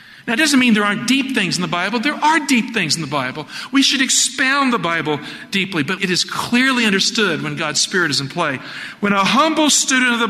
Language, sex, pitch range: English, male, 170-225 Hz